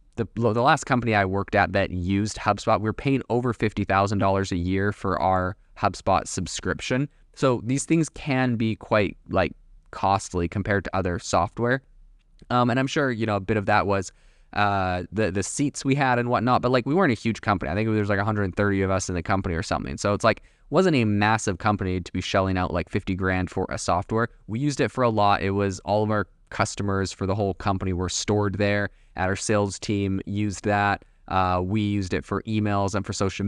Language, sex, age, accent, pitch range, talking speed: English, male, 20-39, American, 95-115 Hz, 220 wpm